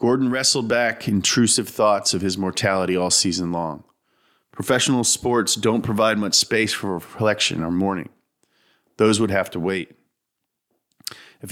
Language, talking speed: English, 140 wpm